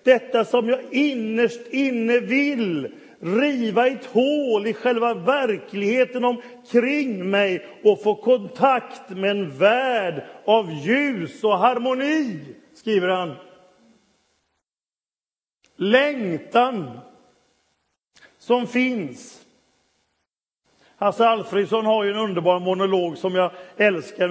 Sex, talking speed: male, 95 wpm